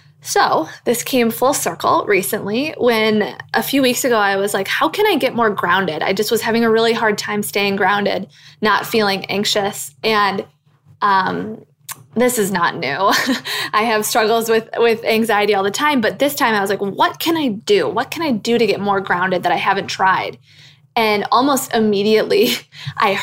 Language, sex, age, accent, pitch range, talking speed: English, female, 20-39, American, 200-250 Hz, 190 wpm